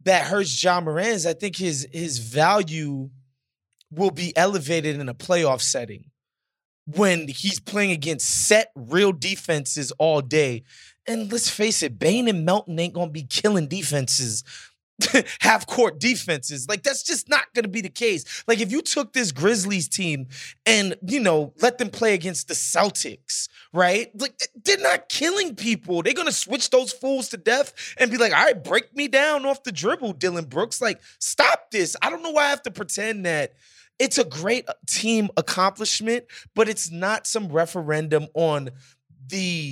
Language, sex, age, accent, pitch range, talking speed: English, male, 20-39, American, 150-210 Hz, 175 wpm